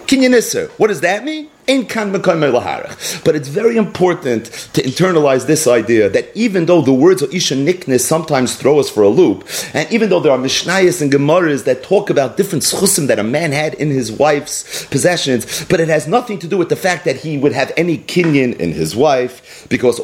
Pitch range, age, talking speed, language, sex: 140-195 Hz, 40-59, 200 wpm, English, male